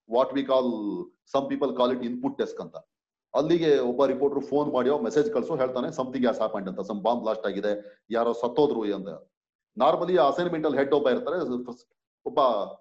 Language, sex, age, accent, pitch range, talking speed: Kannada, male, 40-59, native, 130-160 Hz, 150 wpm